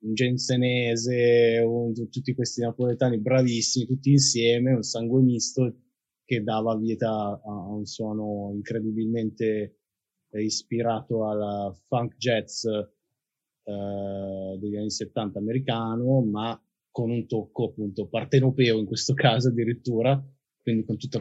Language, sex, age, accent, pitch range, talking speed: Italian, male, 20-39, native, 105-130 Hz, 115 wpm